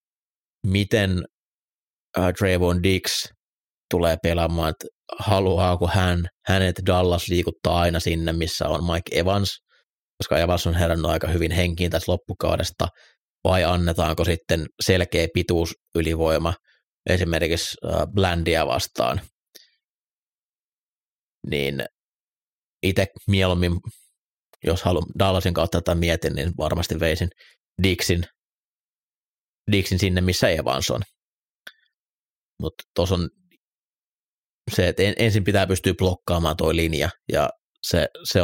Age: 30-49